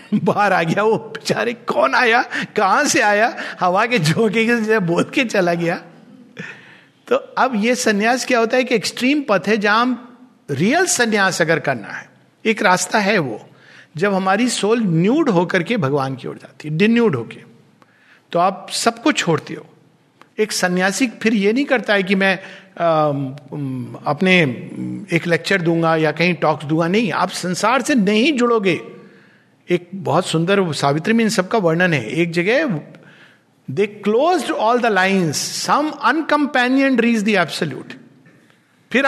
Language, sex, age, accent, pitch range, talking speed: Hindi, male, 50-69, native, 170-225 Hz, 155 wpm